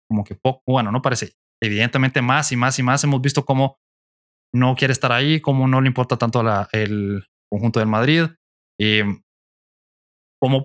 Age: 20-39